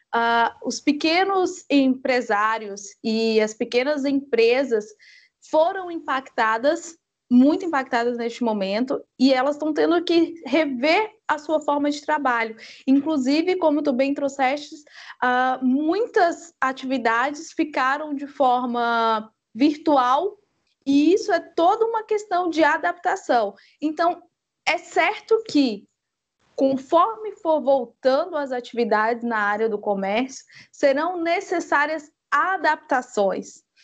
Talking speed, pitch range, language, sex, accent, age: 105 wpm, 250-335 Hz, Portuguese, female, Brazilian, 20-39